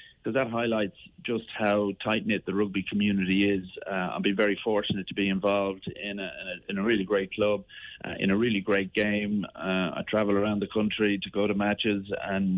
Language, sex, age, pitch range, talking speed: English, male, 40-59, 100-110 Hz, 195 wpm